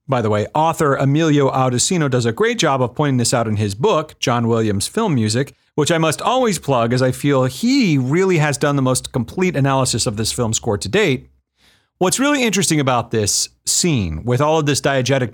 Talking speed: 210 wpm